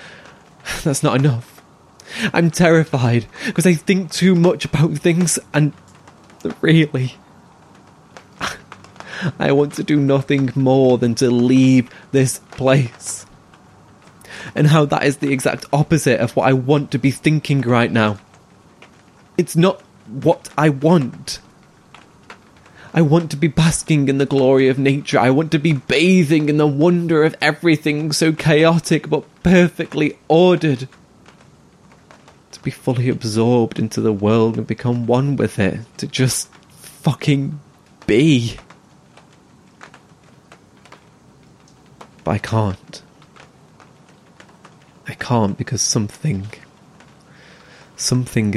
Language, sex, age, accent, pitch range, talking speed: English, male, 20-39, British, 125-160 Hz, 115 wpm